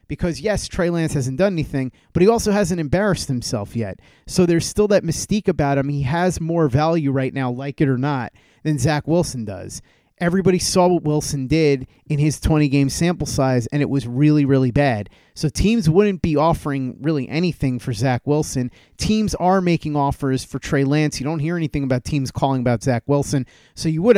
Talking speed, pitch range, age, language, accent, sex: 200 wpm, 135-170 Hz, 30-49, English, American, male